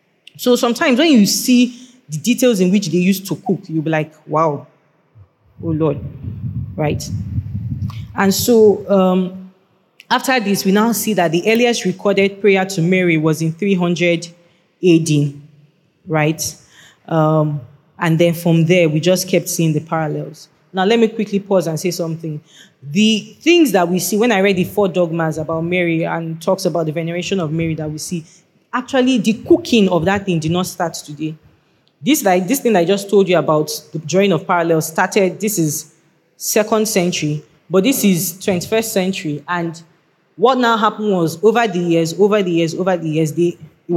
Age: 20-39